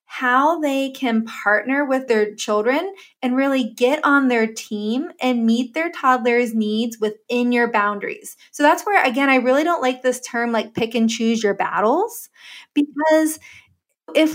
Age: 20-39